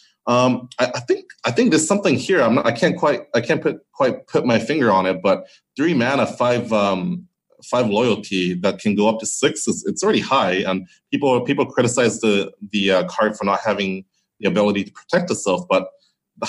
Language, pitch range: English, 95-120 Hz